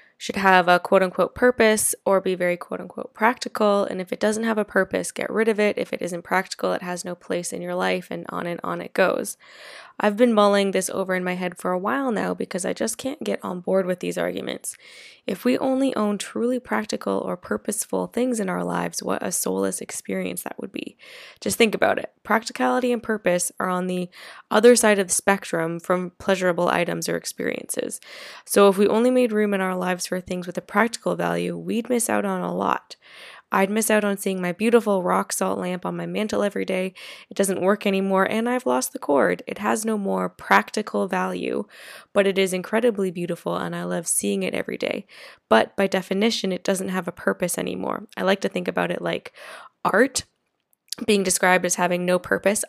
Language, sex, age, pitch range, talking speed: English, female, 10-29, 175-215 Hz, 210 wpm